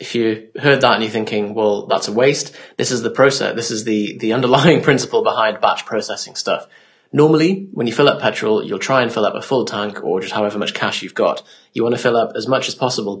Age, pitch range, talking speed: 30-49, 110-140 Hz, 250 wpm